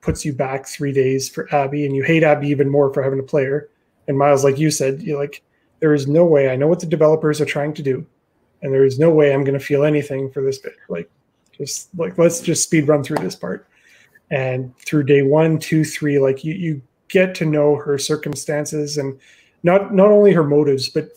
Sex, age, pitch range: male, 30-49, 140-160 Hz